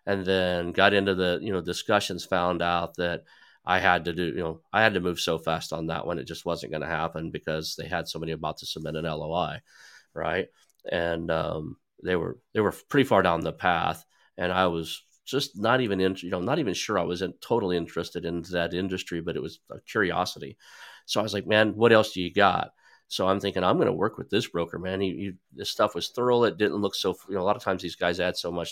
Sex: male